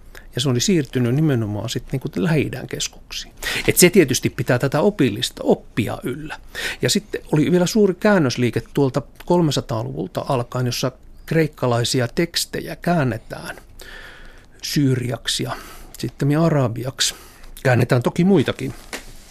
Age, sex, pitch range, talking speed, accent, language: 60-79, male, 120-155 Hz, 115 wpm, native, Finnish